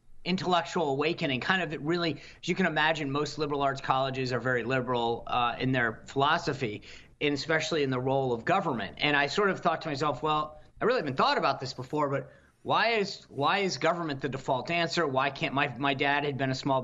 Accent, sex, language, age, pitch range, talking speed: American, male, English, 40-59, 135-165 Hz, 215 wpm